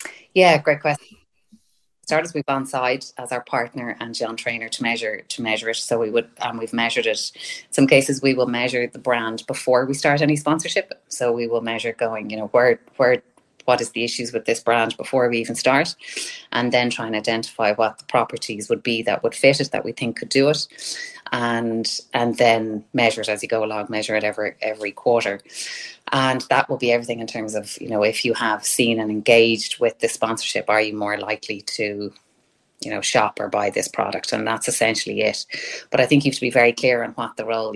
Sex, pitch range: female, 110-130 Hz